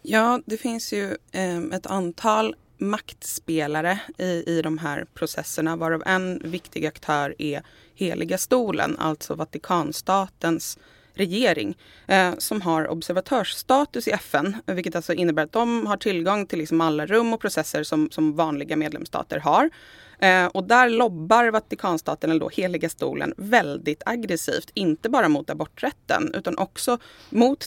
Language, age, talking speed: Swedish, 20-39, 140 wpm